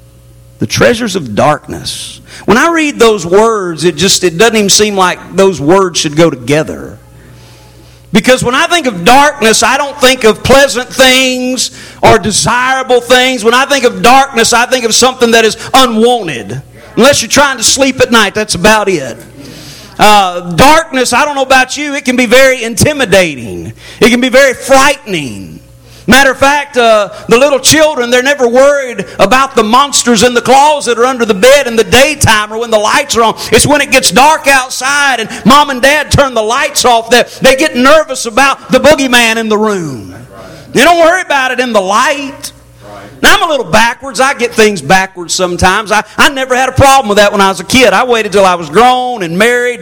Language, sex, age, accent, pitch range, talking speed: English, male, 50-69, American, 195-260 Hz, 200 wpm